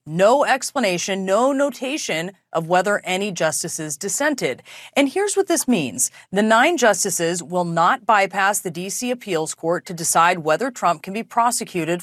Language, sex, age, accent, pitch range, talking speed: English, female, 30-49, American, 160-205 Hz, 155 wpm